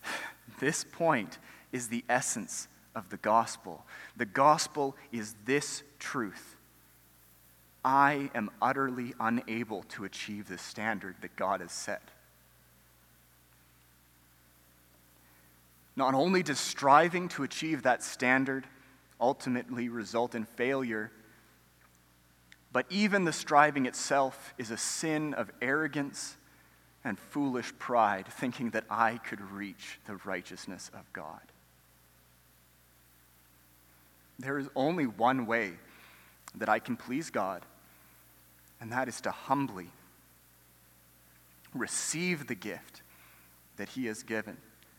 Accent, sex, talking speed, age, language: American, male, 110 wpm, 30-49, English